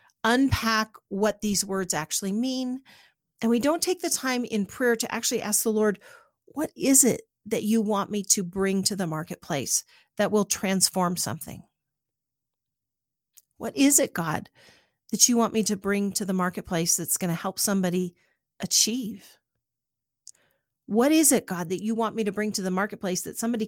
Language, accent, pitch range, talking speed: English, American, 185-245 Hz, 175 wpm